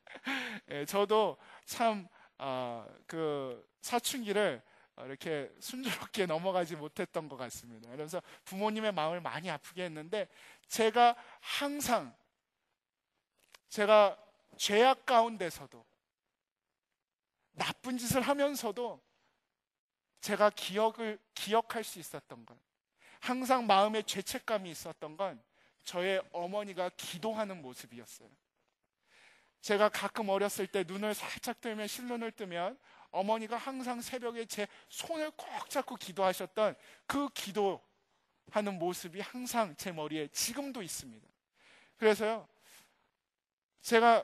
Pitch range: 180-235 Hz